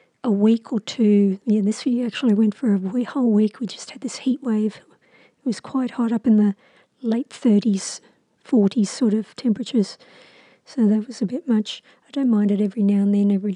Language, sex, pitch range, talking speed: English, female, 205-240 Hz, 215 wpm